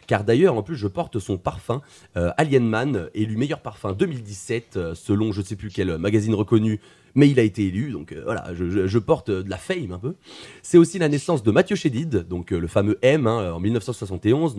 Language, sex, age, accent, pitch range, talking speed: French, male, 30-49, French, 100-155 Hz, 220 wpm